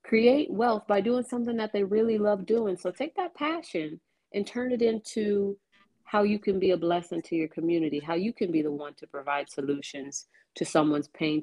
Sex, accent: female, American